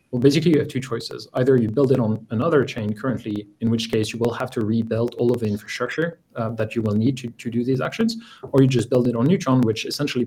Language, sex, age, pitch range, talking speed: English, male, 20-39, 110-135 Hz, 265 wpm